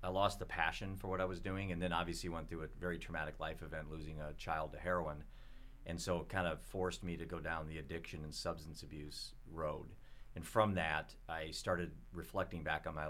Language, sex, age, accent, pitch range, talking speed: English, male, 40-59, American, 75-85 Hz, 225 wpm